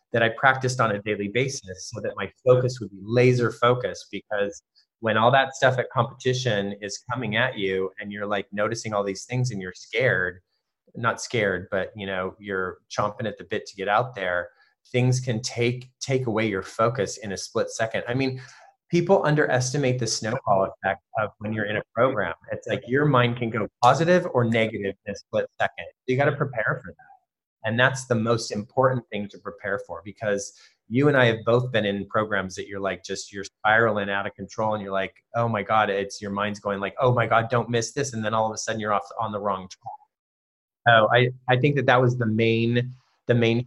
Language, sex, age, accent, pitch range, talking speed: English, male, 30-49, American, 100-125 Hz, 220 wpm